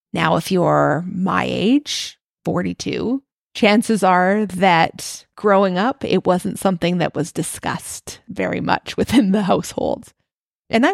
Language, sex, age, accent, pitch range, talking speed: English, female, 30-49, American, 170-210 Hz, 125 wpm